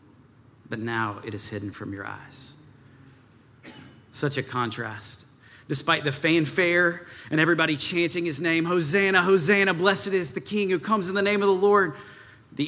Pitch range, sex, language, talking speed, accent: 120-140 Hz, male, English, 160 wpm, American